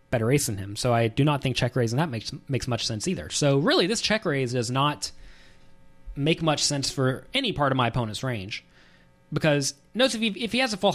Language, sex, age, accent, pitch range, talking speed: English, male, 30-49, American, 110-160 Hz, 230 wpm